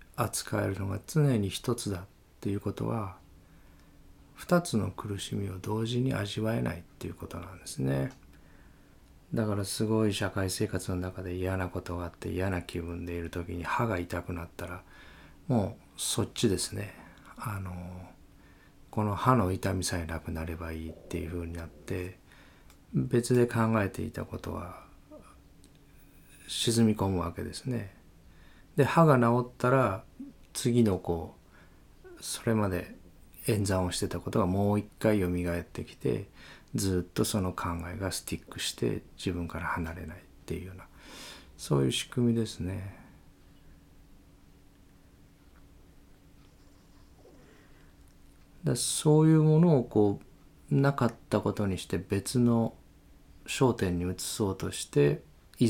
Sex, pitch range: male, 85-110 Hz